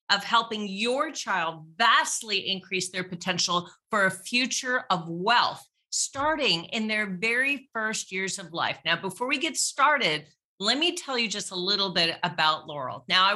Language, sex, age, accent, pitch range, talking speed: English, female, 40-59, American, 185-255 Hz, 170 wpm